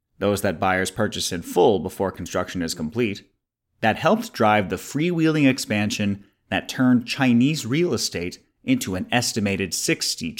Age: 30-49